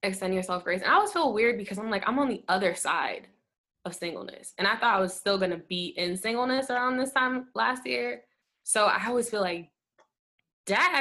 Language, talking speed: English, 220 wpm